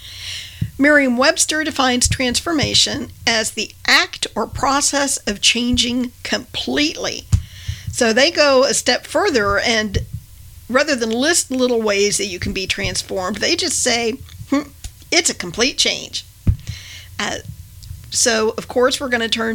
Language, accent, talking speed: English, American, 135 wpm